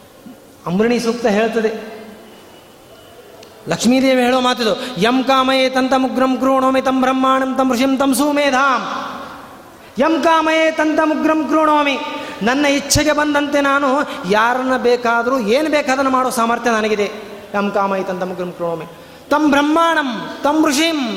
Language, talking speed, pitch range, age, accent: Kannada, 115 wpm, 215-270 Hz, 30-49, native